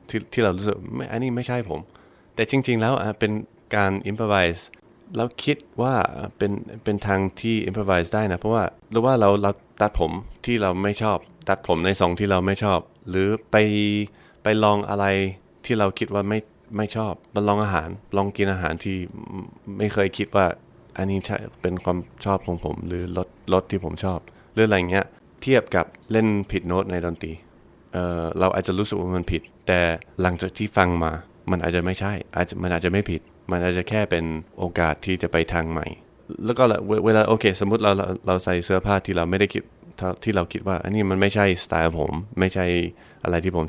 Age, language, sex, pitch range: 20-39, Thai, male, 90-105 Hz